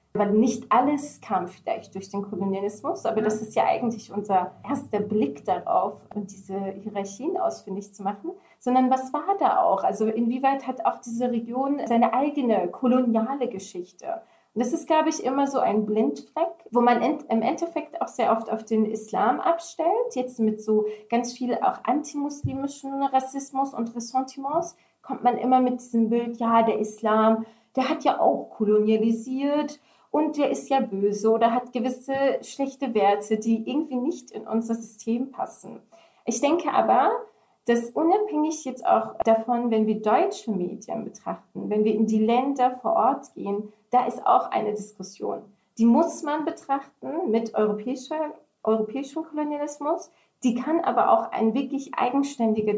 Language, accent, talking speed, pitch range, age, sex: German, German, 160 wpm, 220-285 Hz, 30-49, female